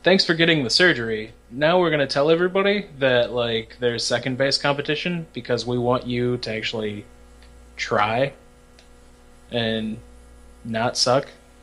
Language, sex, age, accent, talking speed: English, male, 20-39, American, 140 wpm